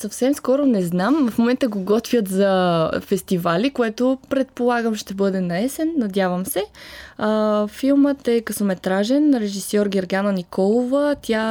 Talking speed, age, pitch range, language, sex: 130 wpm, 20-39, 185-230 Hz, Bulgarian, female